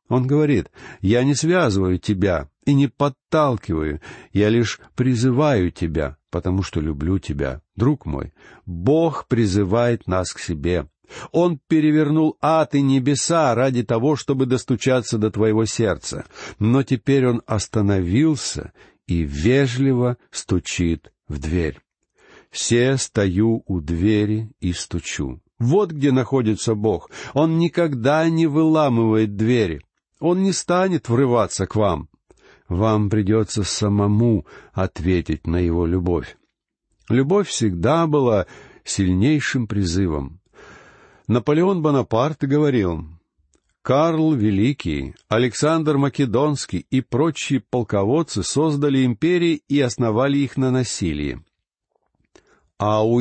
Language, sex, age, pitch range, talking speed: Russian, male, 60-79, 95-145 Hz, 110 wpm